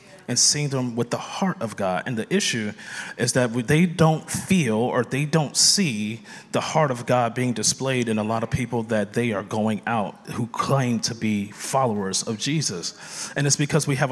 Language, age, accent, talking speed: English, 30-49, American, 205 wpm